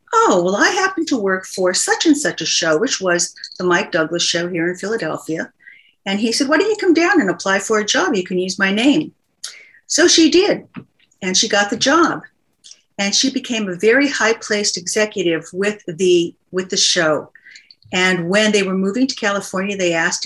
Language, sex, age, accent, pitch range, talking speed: English, female, 50-69, American, 180-235 Hz, 205 wpm